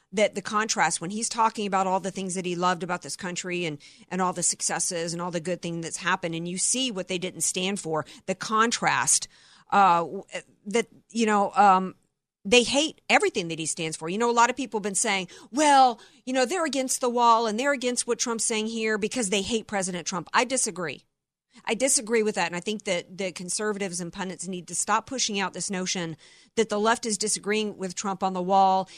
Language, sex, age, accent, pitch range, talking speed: English, female, 50-69, American, 185-235 Hz, 225 wpm